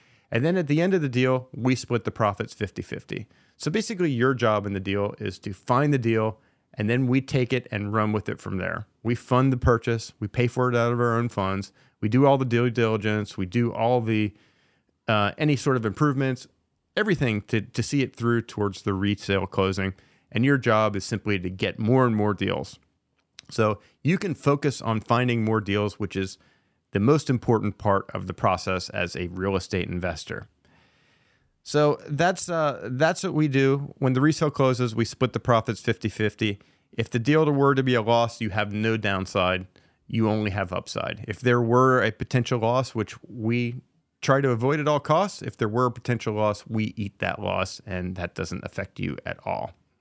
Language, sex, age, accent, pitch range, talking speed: English, male, 30-49, American, 105-130 Hz, 205 wpm